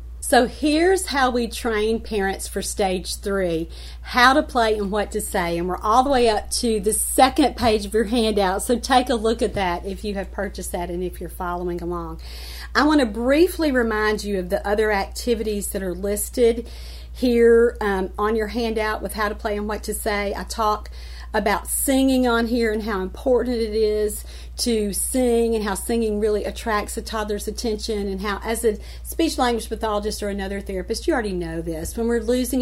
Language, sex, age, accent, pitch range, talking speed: English, female, 40-59, American, 195-235 Hz, 200 wpm